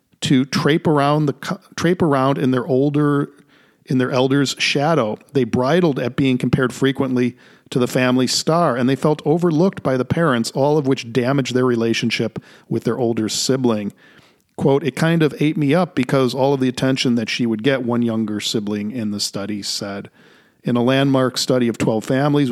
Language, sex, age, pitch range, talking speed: English, male, 40-59, 115-140 Hz, 185 wpm